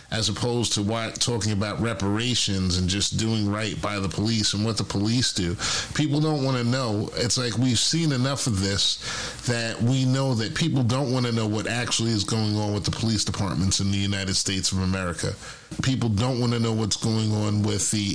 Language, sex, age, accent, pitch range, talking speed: English, male, 40-59, American, 105-125 Hz, 210 wpm